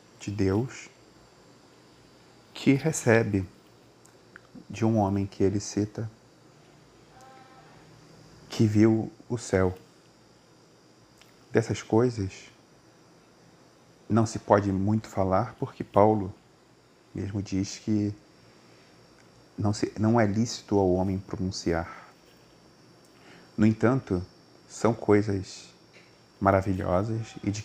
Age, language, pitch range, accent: 40-59, Portuguese, 95-110 Hz, Brazilian